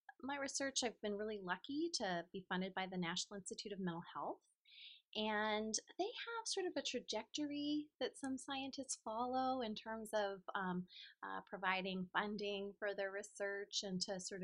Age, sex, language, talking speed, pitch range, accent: 30-49, female, English, 165 wpm, 180-260 Hz, American